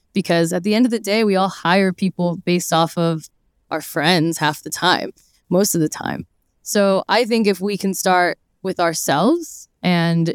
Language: English